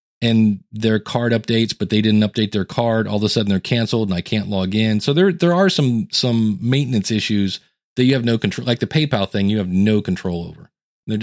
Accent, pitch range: American, 105-150 Hz